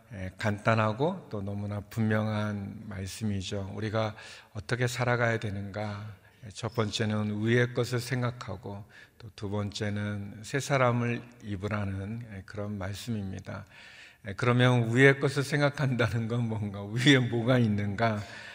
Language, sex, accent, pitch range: Korean, male, native, 105-120 Hz